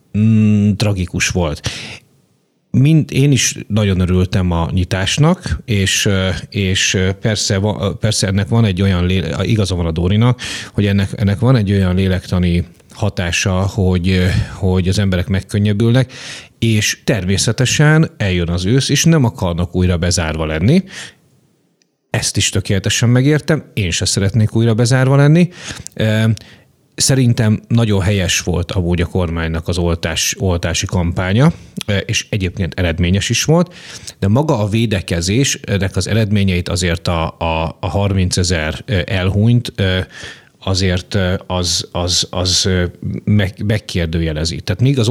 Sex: male